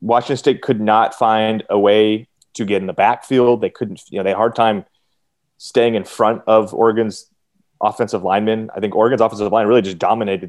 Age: 30-49